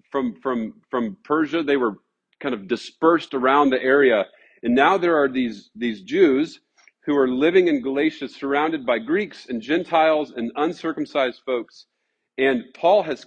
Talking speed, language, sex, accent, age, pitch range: 160 wpm, English, male, American, 40-59, 125-165 Hz